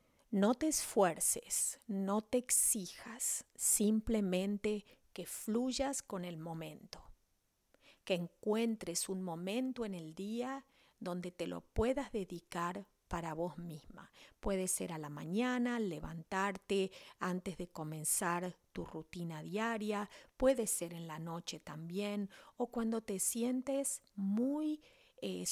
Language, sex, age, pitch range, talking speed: English, female, 40-59, 175-220 Hz, 120 wpm